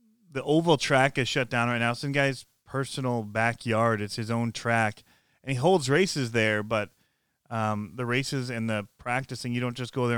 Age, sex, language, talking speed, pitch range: 30-49, male, English, 195 wpm, 110-130 Hz